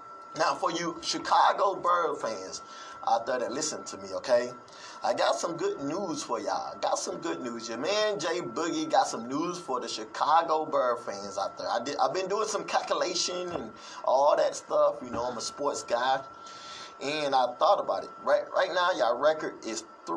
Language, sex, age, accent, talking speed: English, male, 20-39, American, 195 wpm